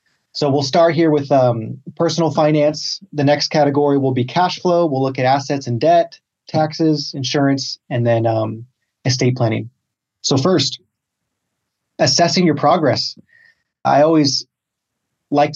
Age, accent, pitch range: 30-49, American, 125-150 Hz